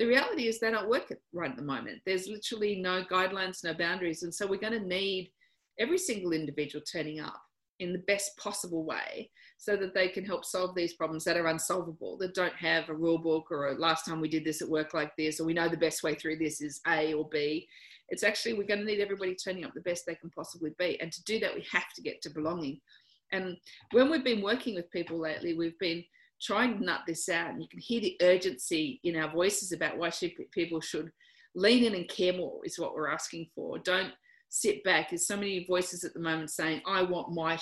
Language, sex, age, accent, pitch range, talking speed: English, female, 40-59, Australian, 160-200 Hz, 240 wpm